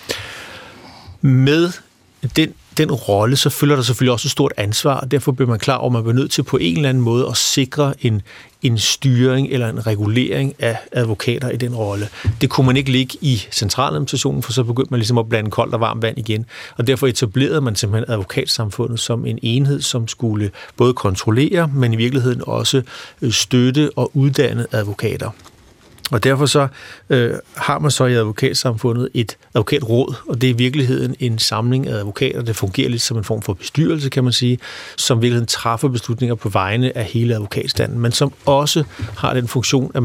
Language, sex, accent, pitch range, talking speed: Danish, male, native, 115-135 Hz, 190 wpm